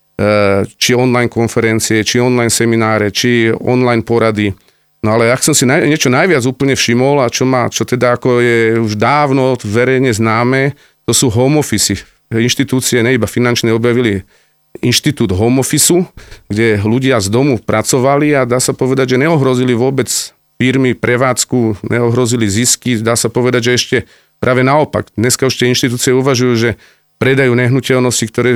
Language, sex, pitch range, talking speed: Slovak, male, 115-135 Hz, 155 wpm